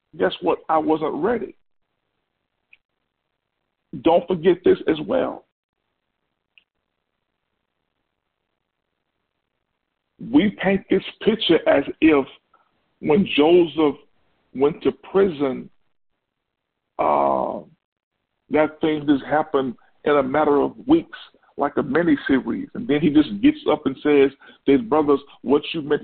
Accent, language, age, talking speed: American, English, 50-69, 110 wpm